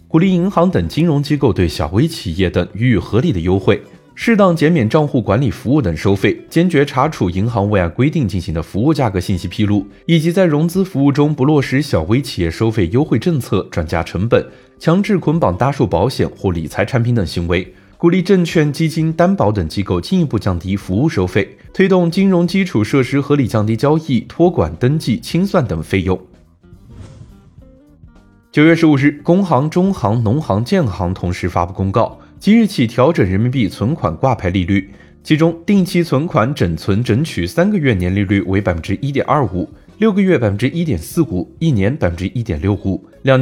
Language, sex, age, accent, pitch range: Chinese, male, 20-39, native, 95-160 Hz